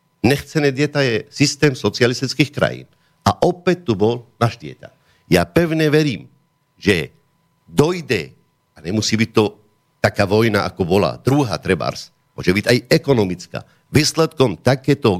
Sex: male